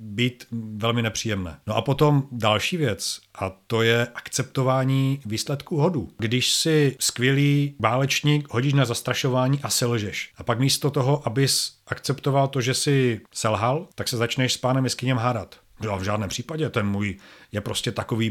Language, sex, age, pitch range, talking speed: Czech, male, 40-59, 115-150 Hz, 155 wpm